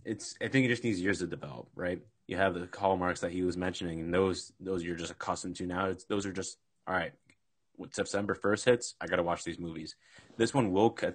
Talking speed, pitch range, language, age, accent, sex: 250 wpm, 90-120 Hz, English, 20-39, American, male